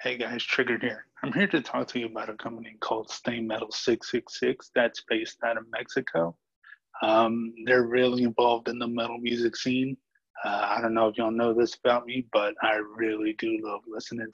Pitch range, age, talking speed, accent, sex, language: 110-120 Hz, 20-39, 195 wpm, American, male, English